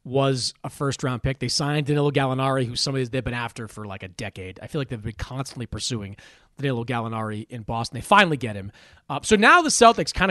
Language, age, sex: English, 30-49, male